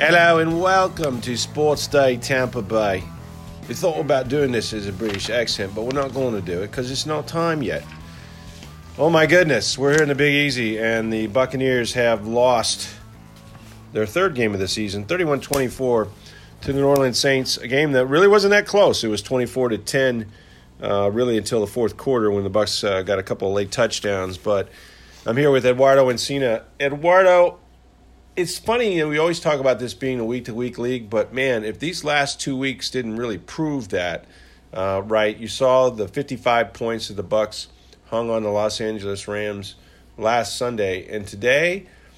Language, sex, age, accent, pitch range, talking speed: English, male, 40-59, American, 105-135 Hz, 190 wpm